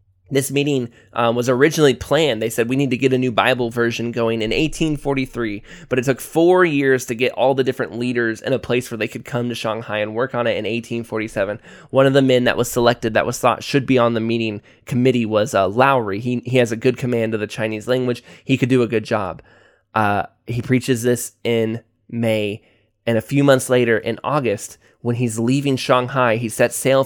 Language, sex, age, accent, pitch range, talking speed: English, male, 20-39, American, 110-130 Hz, 220 wpm